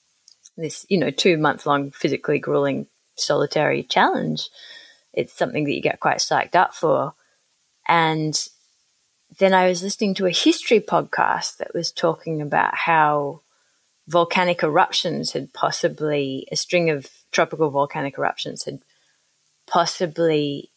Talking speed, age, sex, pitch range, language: 125 wpm, 20-39, female, 150-195 Hz, English